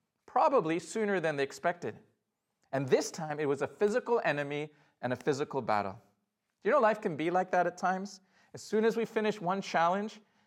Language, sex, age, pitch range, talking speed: English, male, 40-59, 165-215 Hz, 190 wpm